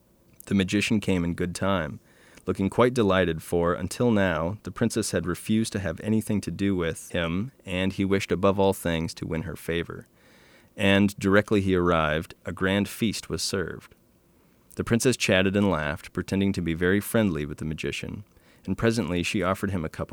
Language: English